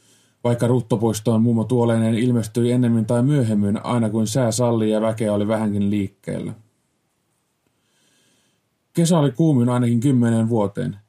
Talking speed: 125 wpm